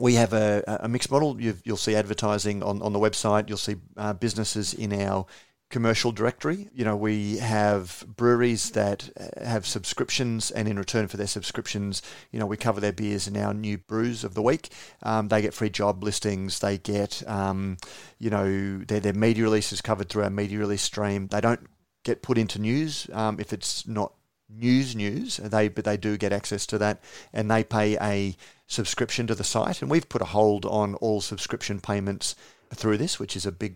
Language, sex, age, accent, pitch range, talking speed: English, male, 30-49, Australian, 100-110 Hz, 200 wpm